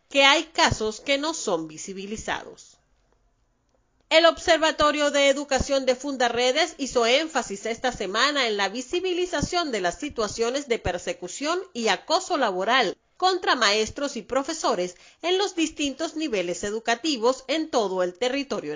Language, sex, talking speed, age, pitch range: Spanish, female, 130 wpm, 40-59, 220-300 Hz